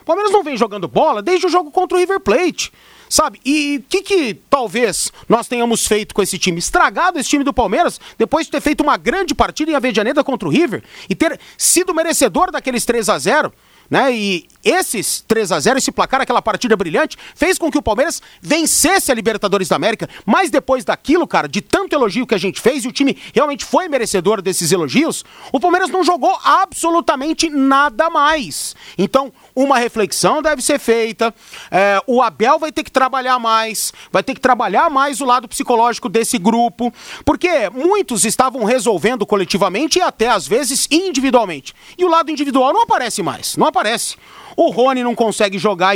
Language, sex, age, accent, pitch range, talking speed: Portuguese, male, 40-59, Brazilian, 220-305 Hz, 185 wpm